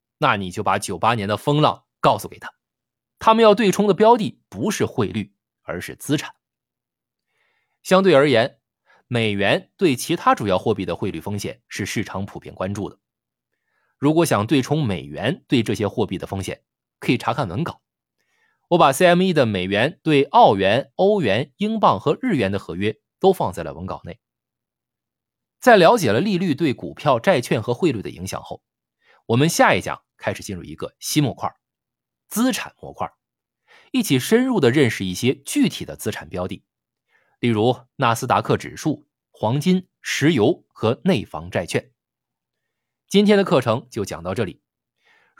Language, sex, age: Chinese, male, 20-39